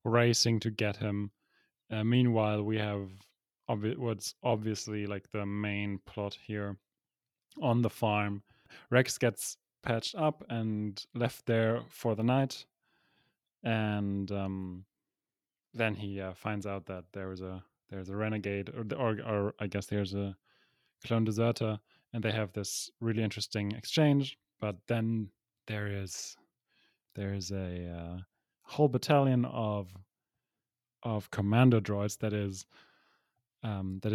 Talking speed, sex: 135 wpm, male